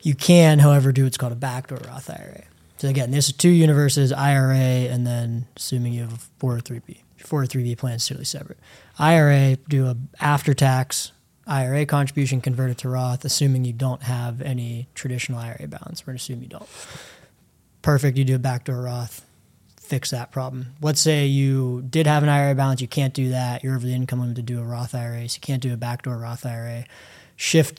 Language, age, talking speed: English, 20-39, 200 wpm